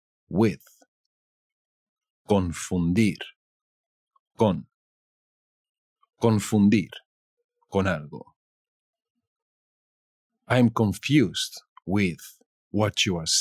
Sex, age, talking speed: male, 50-69, 55 wpm